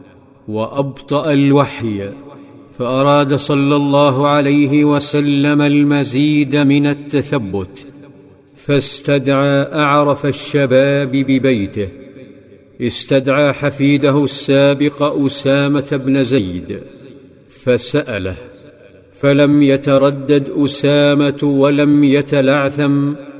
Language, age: Arabic, 50-69